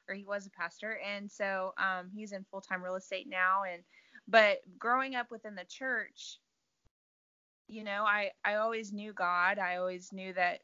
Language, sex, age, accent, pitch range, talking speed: English, female, 20-39, American, 185-210 Hz, 180 wpm